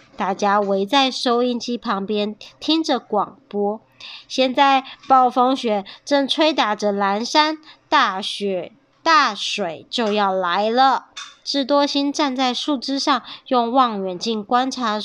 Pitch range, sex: 225-325 Hz, male